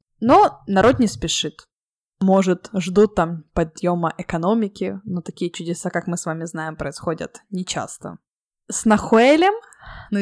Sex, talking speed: female, 130 wpm